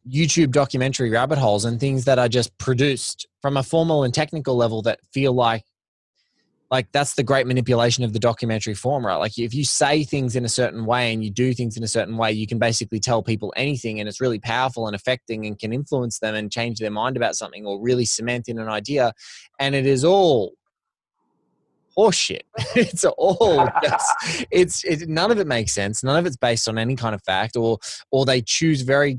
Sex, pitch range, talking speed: male, 110-135 Hz, 210 wpm